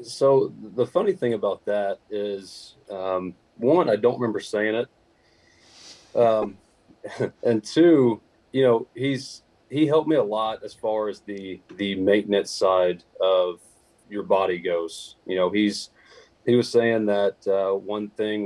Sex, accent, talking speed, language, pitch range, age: male, American, 150 wpm, English, 95-115 Hz, 30-49